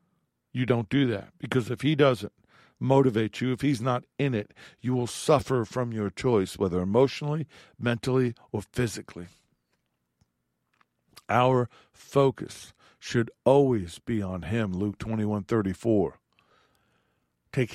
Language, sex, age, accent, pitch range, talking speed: English, male, 50-69, American, 100-125 Hz, 125 wpm